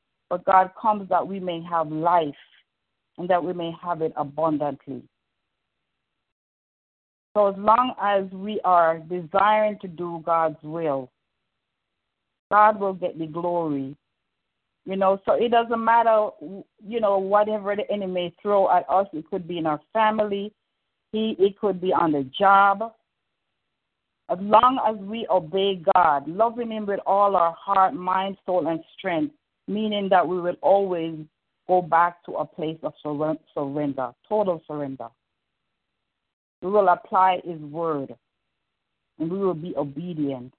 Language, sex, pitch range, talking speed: English, female, 155-200 Hz, 145 wpm